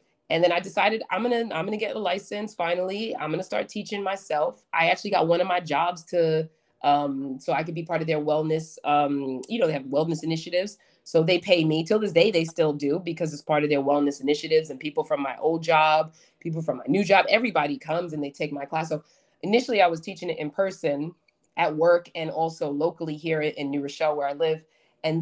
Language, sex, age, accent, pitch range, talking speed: English, female, 20-39, American, 150-180 Hz, 240 wpm